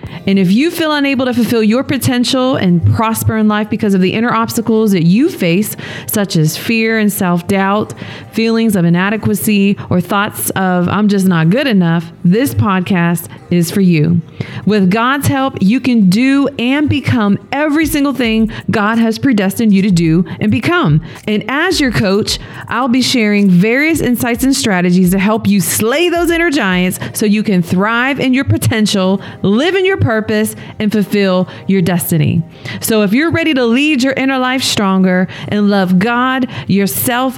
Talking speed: 175 wpm